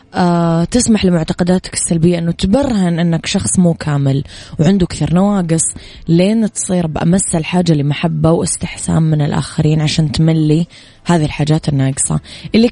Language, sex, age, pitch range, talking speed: Arabic, female, 20-39, 150-180 Hz, 125 wpm